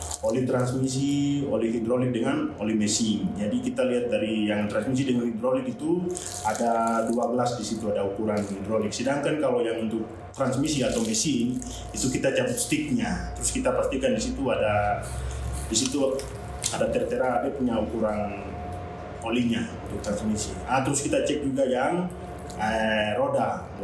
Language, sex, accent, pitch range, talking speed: Indonesian, male, native, 110-135 Hz, 125 wpm